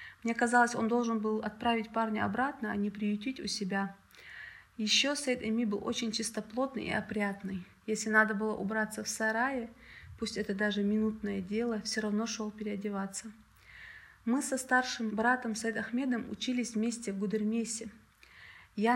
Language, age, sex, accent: Russian, 30-49, female, native